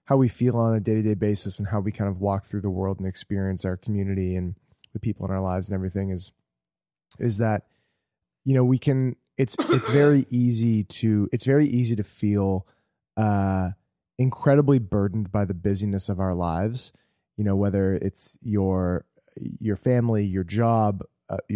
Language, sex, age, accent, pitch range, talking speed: English, male, 20-39, American, 100-125 Hz, 180 wpm